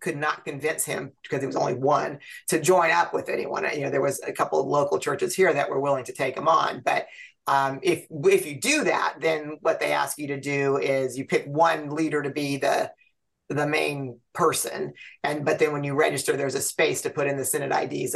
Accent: American